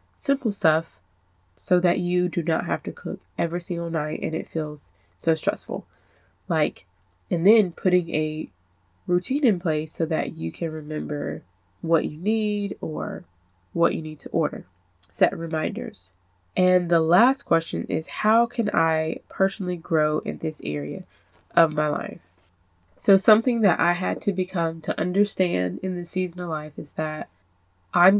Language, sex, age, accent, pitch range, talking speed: English, female, 20-39, American, 155-200 Hz, 160 wpm